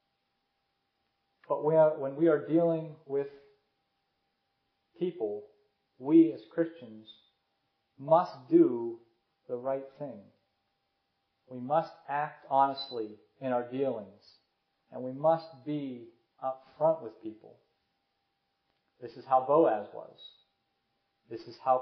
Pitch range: 130-165 Hz